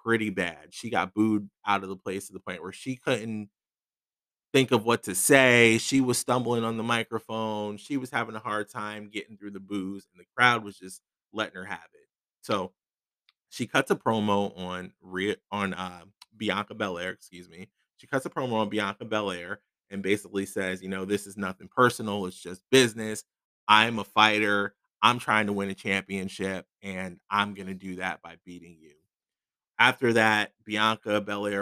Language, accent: English, American